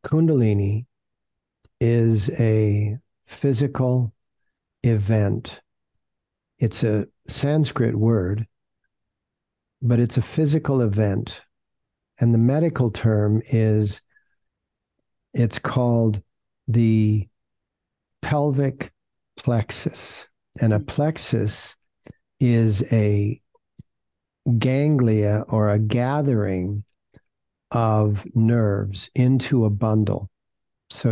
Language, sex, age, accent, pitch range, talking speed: English, male, 50-69, American, 105-125 Hz, 75 wpm